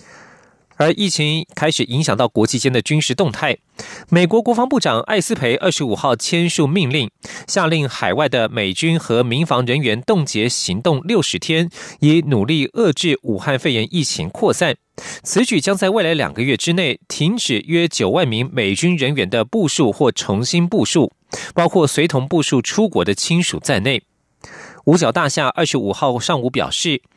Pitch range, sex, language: 135-180 Hz, male, German